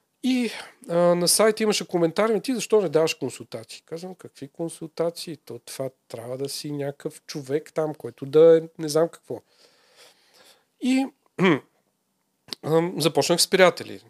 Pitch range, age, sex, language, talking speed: 135-170 Hz, 40-59, male, Bulgarian, 145 wpm